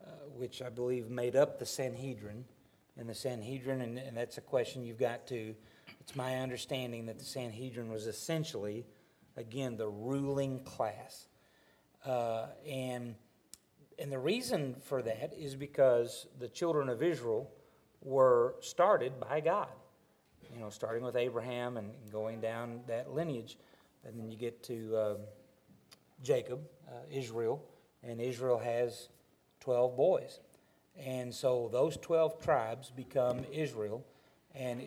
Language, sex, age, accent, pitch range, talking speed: English, male, 40-59, American, 115-140 Hz, 140 wpm